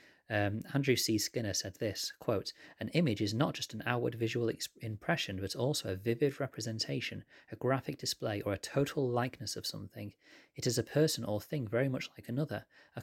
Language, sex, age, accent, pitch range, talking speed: English, male, 30-49, British, 105-125 Hz, 185 wpm